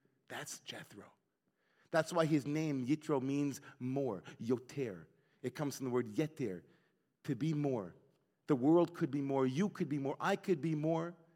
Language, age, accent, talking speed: English, 40-59, American, 170 wpm